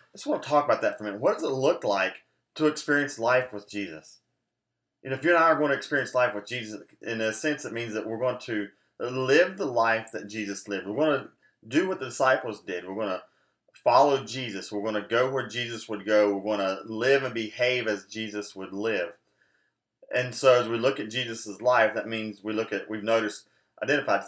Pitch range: 105-130 Hz